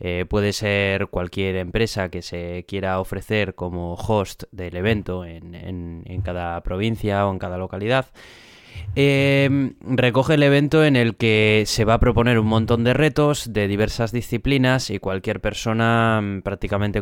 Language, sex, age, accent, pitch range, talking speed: Spanish, male, 20-39, Spanish, 95-115 Hz, 155 wpm